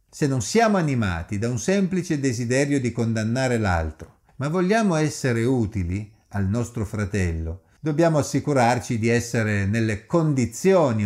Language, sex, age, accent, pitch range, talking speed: Italian, male, 50-69, native, 105-160 Hz, 130 wpm